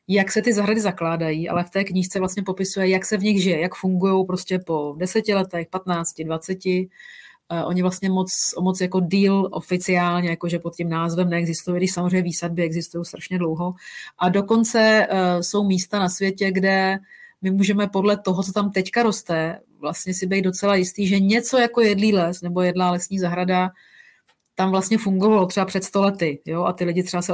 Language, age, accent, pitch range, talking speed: Czech, 30-49, native, 175-200 Hz, 180 wpm